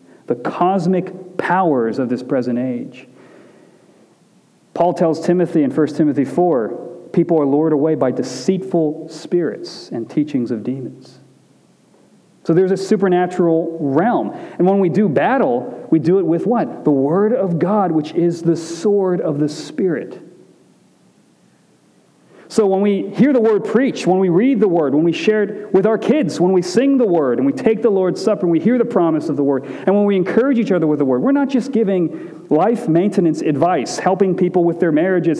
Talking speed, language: 190 wpm, English